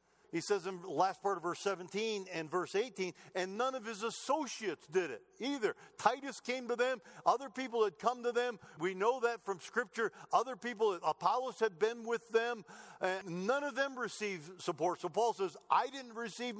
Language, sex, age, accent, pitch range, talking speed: English, male, 50-69, American, 140-230 Hz, 195 wpm